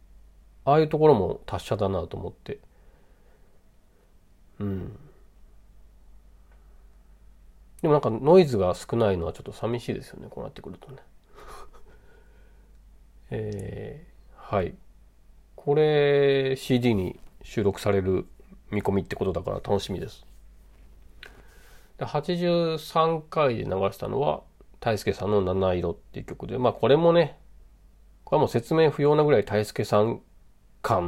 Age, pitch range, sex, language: 40-59, 95-155 Hz, male, Japanese